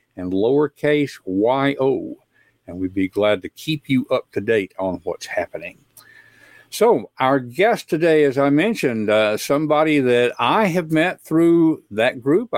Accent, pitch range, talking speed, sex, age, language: American, 125-185 Hz, 155 wpm, male, 60-79, English